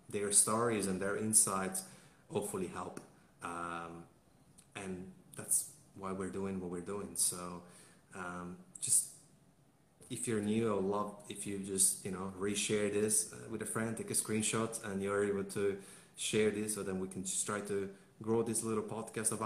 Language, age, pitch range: English, 30-49, 95-110 Hz